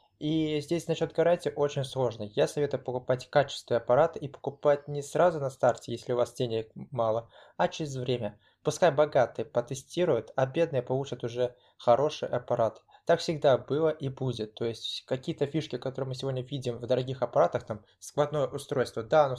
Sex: male